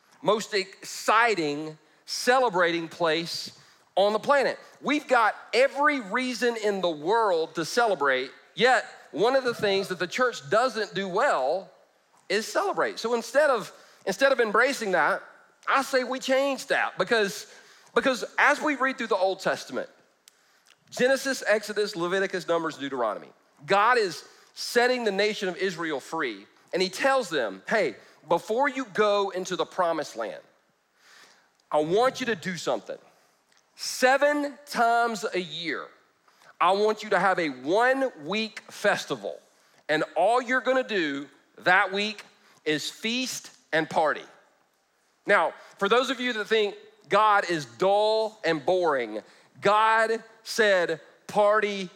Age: 40-59